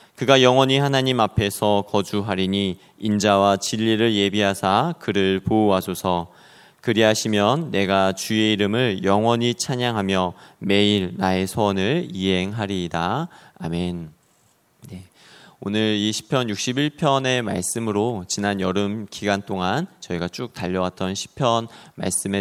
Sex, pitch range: male, 95-125 Hz